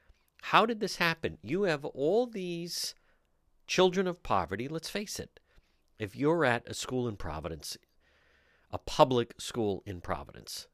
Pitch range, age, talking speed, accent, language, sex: 110-175 Hz, 50-69, 145 wpm, American, English, male